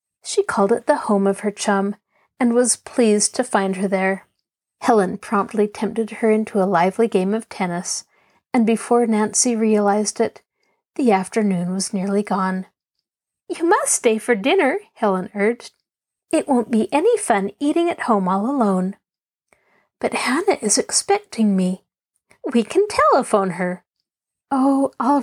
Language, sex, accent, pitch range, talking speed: English, female, American, 195-250 Hz, 150 wpm